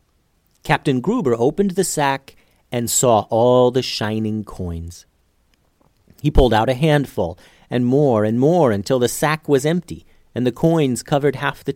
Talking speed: 160 wpm